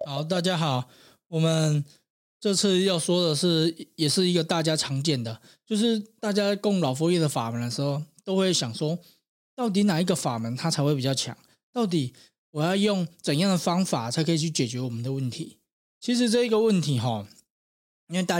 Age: 20-39